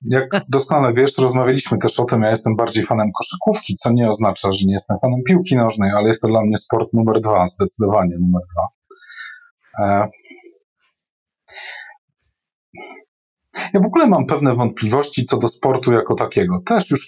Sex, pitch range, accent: male, 100-135 Hz, native